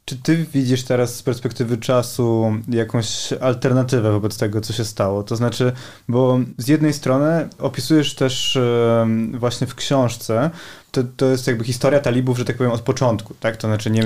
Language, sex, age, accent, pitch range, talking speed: Polish, male, 20-39, native, 115-135 Hz, 165 wpm